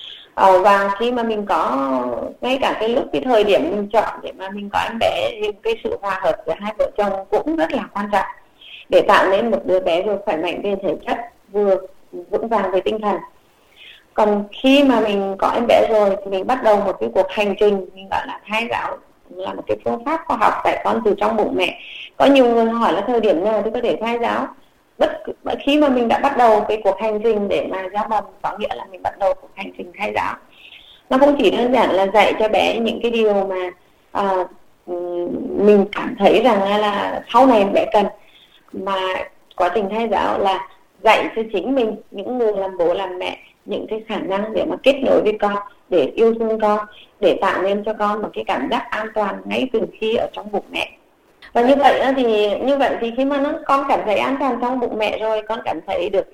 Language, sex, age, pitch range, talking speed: Vietnamese, female, 20-39, 195-245 Hz, 235 wpm